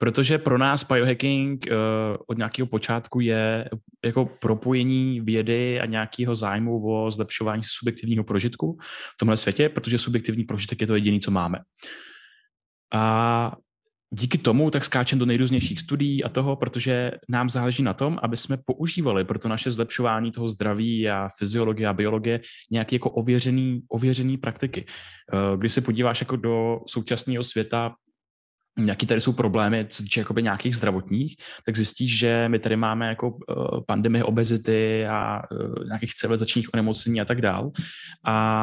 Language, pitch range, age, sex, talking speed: Czech, 110-125 Hz, 20-39, male, 150 wpm